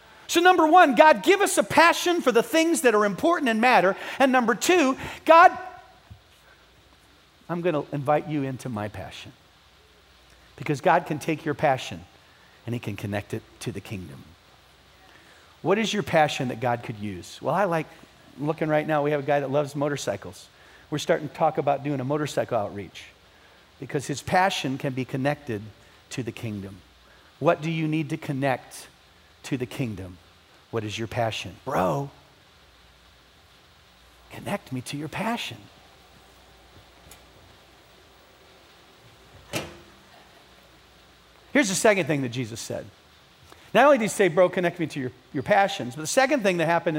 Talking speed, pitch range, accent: 160 wpm, 110-170 Hz, American